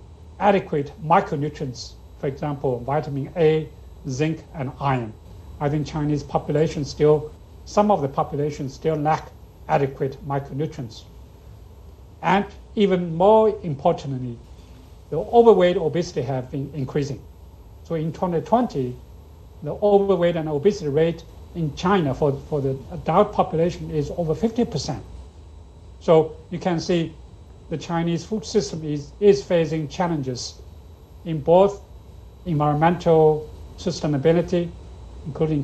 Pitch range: 120-165 Hz